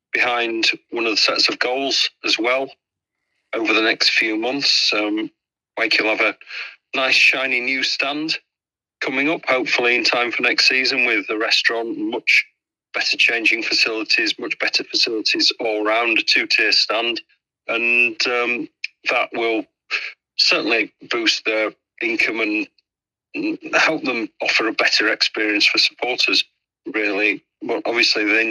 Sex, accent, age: male, British, 40-59